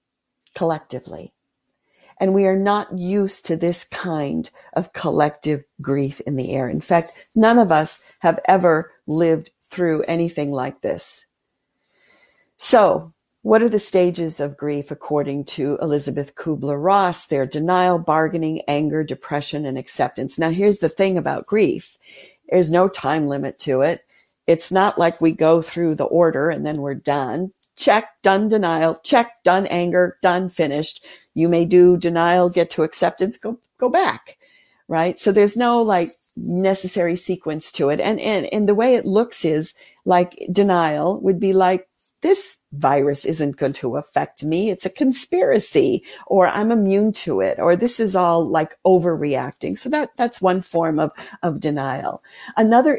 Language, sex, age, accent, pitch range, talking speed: English, female, 50-69, American, 155-195 Hz, 155 wpm